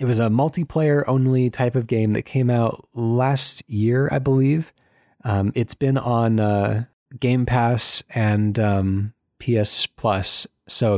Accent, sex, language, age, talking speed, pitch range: American, male, English, 30-49, 140 wpm, 110-130 Hz